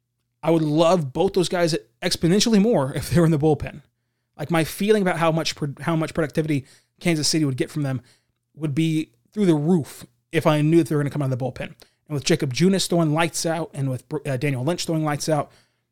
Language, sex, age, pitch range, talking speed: English, male, 20-39, 145-175 Hz, 230 wpm